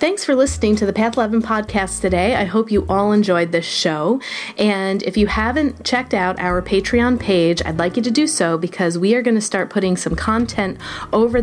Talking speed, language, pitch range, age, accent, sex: 215 wpm, English, 175-220 Hz, 30-49, American, female